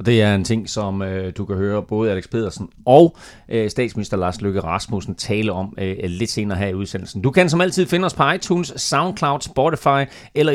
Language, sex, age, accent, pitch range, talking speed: Danish, male, 30-49, native, 105-140 Hz, 215 wpm